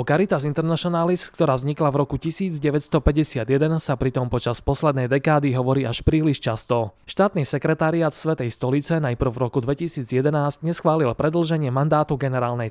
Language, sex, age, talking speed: Slovak, male, 20-39, 135 wpm